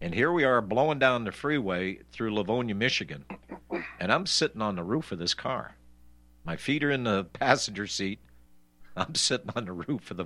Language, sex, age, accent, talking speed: English, male, 50-69, American, 200 wpm